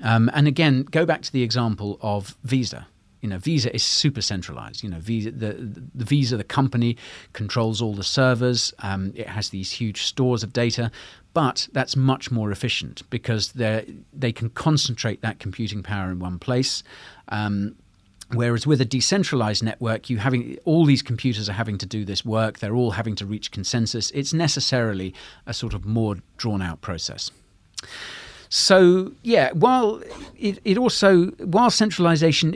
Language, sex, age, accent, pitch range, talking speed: English, male, 40-59, British, 105-135 Hz, 170 wpm